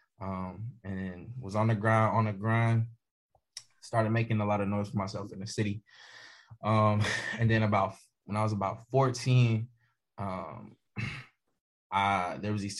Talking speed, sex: 160 wpm, male